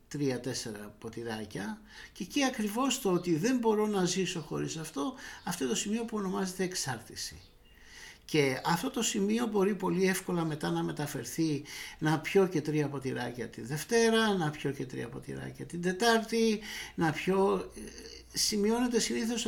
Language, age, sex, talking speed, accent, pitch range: Greek, 60-79, male, 145 wpm, native, 140-210 Hz